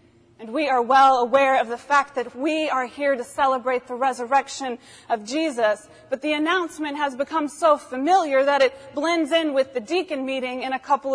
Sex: female